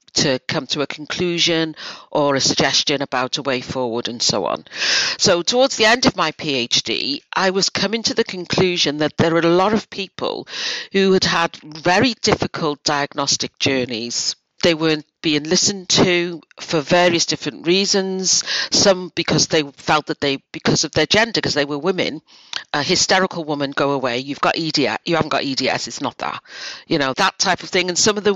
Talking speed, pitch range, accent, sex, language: 190 wpm, 140-180 Hz, British, female, English